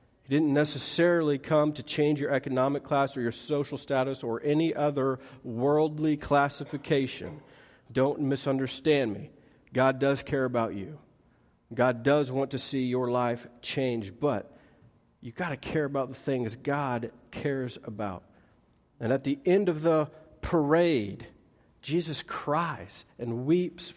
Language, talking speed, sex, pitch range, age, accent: English, 140 wpm, male, 120-165 Hz, 40-59, American